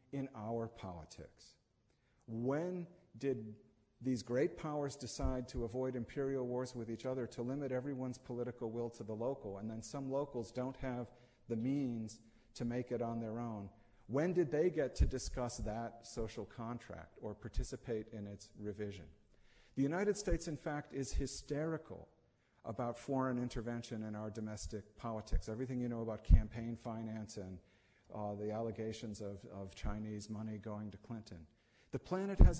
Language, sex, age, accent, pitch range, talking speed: English, male, 50-69, American, 110-130 Hz, 160 wpm